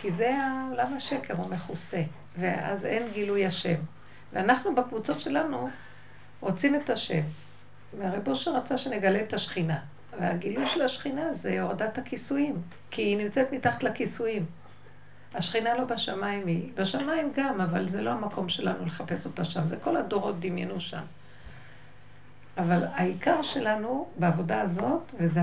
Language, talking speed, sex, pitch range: Hebrew, 135 wpm, female, 165-235 Hz